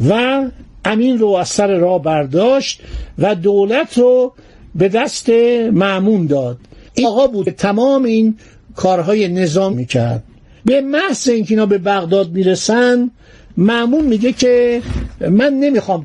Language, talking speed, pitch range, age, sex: Persian, 125 wpm, 165-235 Hz, 60-79, male